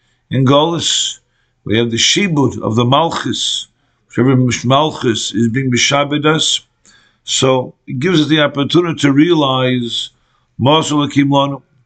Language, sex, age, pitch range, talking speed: English, male, 50-69, 120-150 Hz, 115 wpm